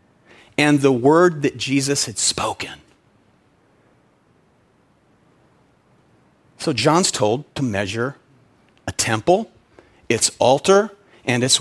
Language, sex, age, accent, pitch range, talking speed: English, male, 40-59, American, 140-210 Hz, 95 wpm